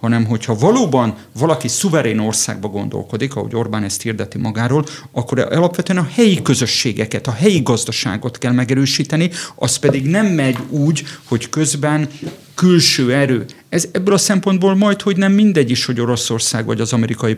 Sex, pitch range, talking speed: male, 115-145 Hz, 150 wpm